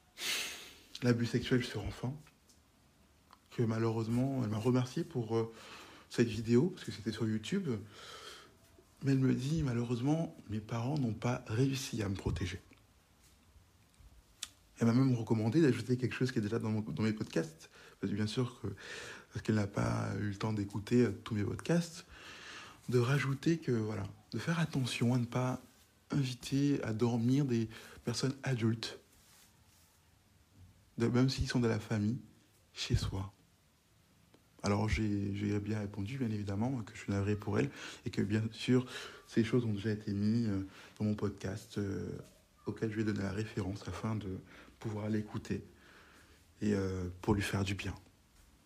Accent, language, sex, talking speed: French, French, male, 155 wpm